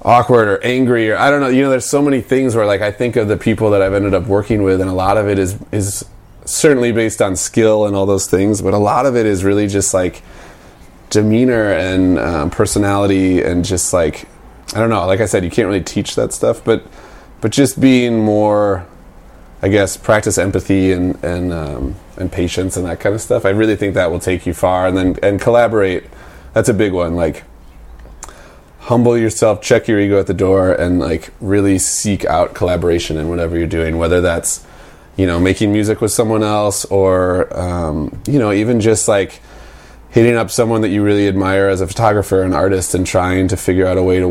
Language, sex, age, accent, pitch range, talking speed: English, male, 20-39, American, 90-110 Hz, 215 wpm